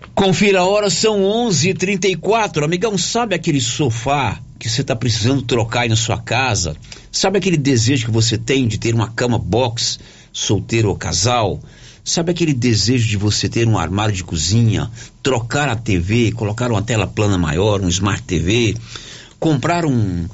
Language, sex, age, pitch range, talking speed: Portuguese, male, 60-79, 110-145 Hz, 170 wpm